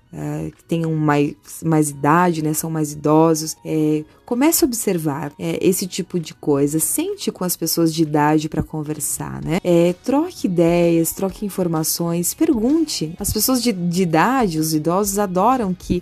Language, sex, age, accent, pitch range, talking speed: Portuguese, female, 20-39, Brazilian, 165-210 Hz, 160 wpm